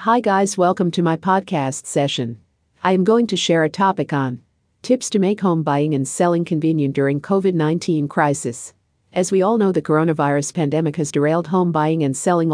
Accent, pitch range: American, 140-180 Hz